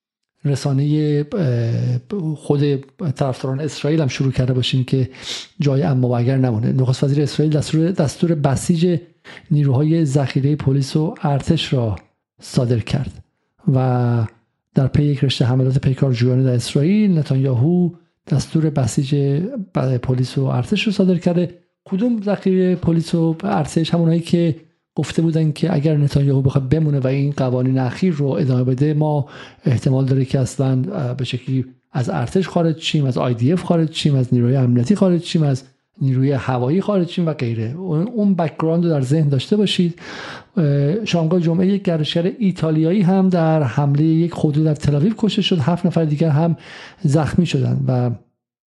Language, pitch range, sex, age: Persian, 130-170 Hz, male, 50-69